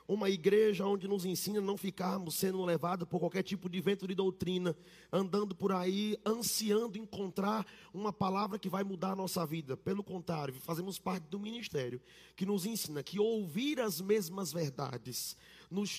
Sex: male